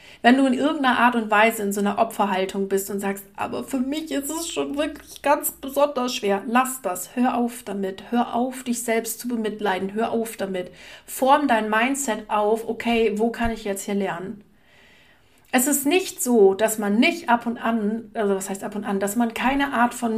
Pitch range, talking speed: 200-245 Hz, 210 wpm